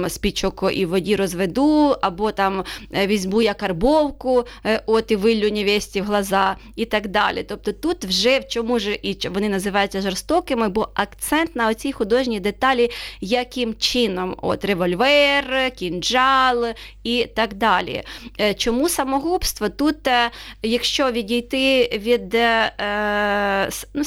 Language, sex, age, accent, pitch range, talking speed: Ukrainian, female, 20-39, native, 200-240 Hz, 120 wpm